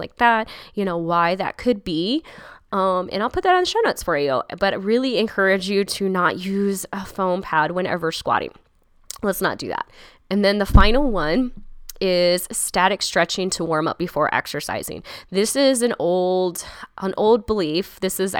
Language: English